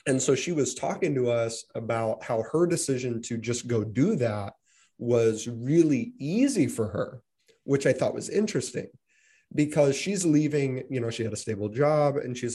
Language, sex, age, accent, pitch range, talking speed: English, male, 30-49, American, 115-160 Hz, 180 wpm